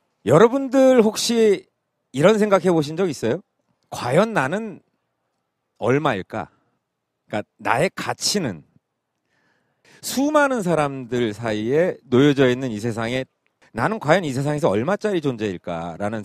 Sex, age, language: male, 40-59, Korean